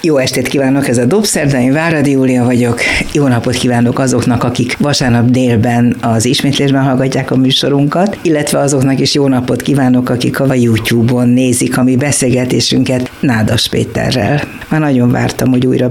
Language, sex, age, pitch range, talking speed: Hungarian, female, 60-79, 125-150 Hz, 160 wpm